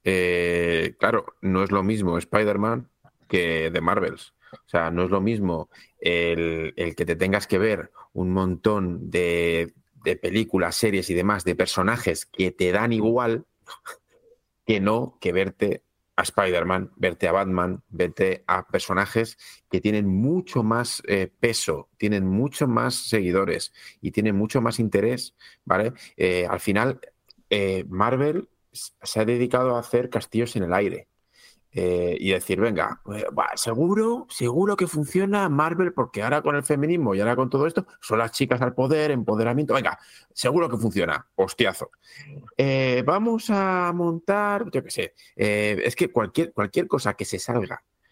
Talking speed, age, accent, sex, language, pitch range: 160 wpm, 40-59, Spanish, male, Spanish, 95-145 Hz